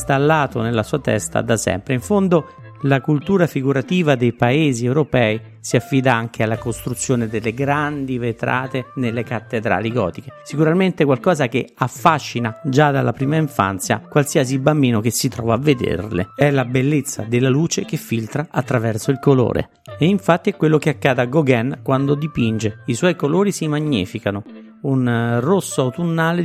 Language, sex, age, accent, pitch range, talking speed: Italian, male, 50-69, native, 115-150 Hz, 155 wpm